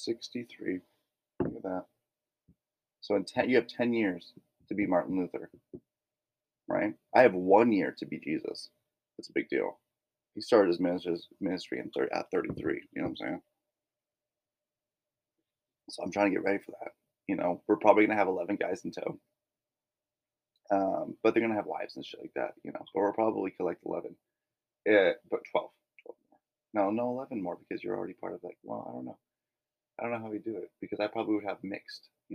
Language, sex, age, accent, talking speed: English, male, 30-49, American, 205 wpm